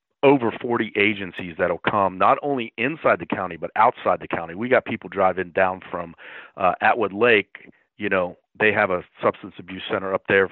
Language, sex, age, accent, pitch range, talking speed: English, male, 40-59, American, 95-110 Hz, 190 wpm